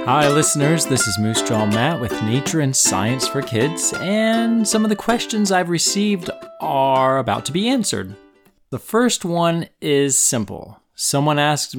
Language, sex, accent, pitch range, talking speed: English, male, American, 110-170 Hz, 165 wpm